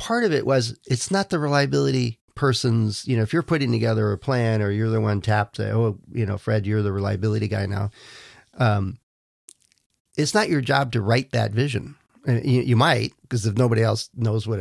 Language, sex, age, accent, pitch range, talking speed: English, male, 40-59, American, 110-130 Hz, 210 wpm